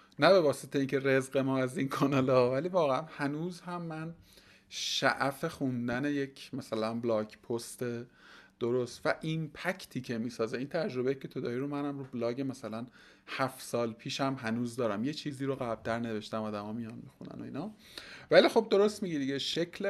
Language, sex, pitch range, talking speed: Persian, male, 120-170 Hz, 175 wpm